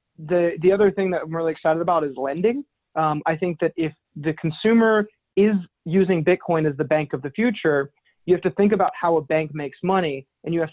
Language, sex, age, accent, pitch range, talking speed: English, male, 20-39, American, 150-180 Hz, 225 wpm